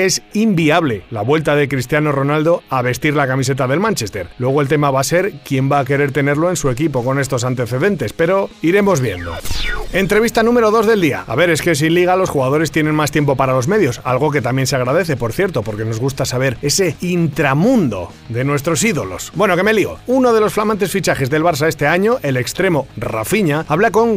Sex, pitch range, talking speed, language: male, 140-195 Hz, 215 wpm, Spanish